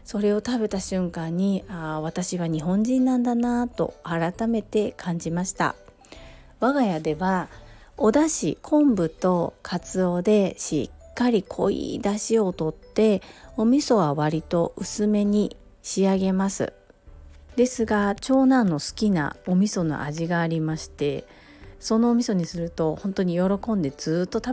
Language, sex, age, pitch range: Japanese, female, 40-59, 160-215 Hz